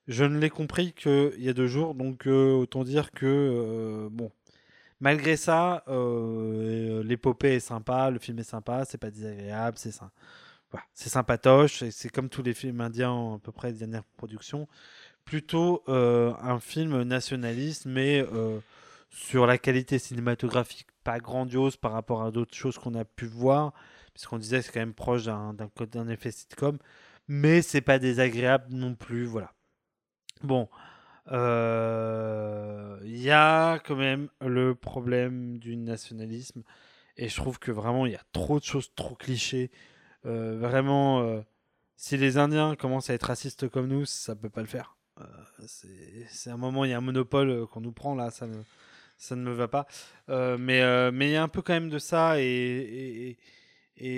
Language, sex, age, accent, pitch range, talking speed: French, male, 20-39, French, 115-135 Hz, 180 wpm